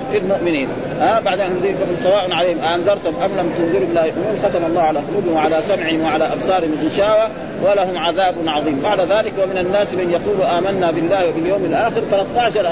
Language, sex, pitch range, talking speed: Arabic, male, 170-210 Hz, 180 wpm